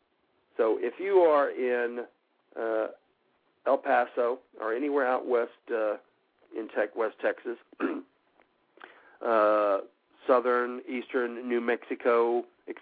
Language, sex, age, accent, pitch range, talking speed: English, male, 50-69, American, 115-160 Hz, 110 wpm